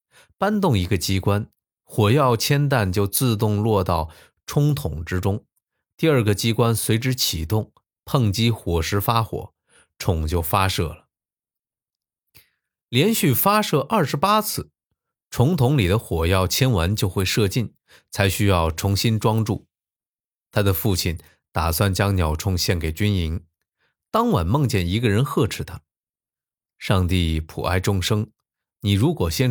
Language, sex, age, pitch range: Chinese, male, 20-39, 90-120 Hz